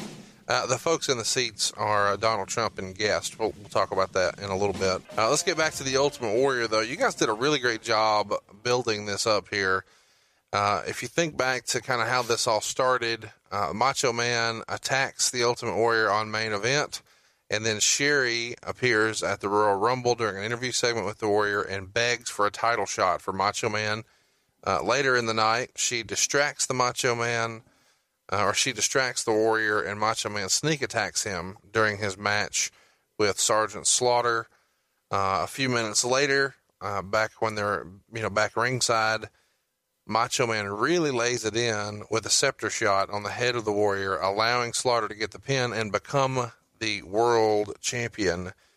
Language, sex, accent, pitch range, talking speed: English, male, American, 105-125 Hz, 190 wpm